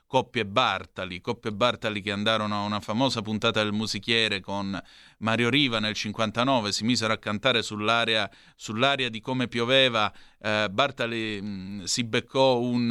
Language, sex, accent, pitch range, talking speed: Italian, male, native, 105-125 Hz, 155 wpm